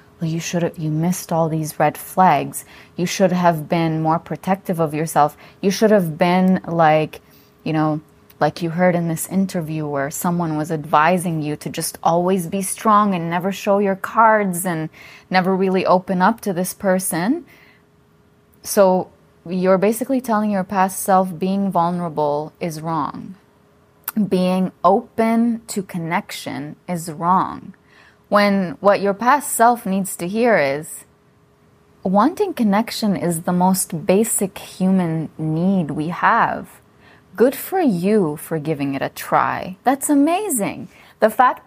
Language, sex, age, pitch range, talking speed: English, female, 20-39, 165-205 Hz, 145 wpm